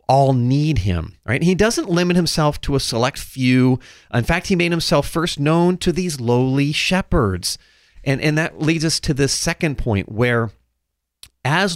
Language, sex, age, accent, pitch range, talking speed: English, male, 40-59, American, 105-140 Hz, 175 wpm